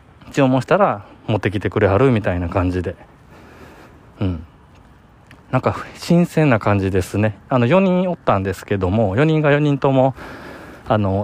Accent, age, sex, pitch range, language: native, 20-39, male, 95-130 Hz, Japanese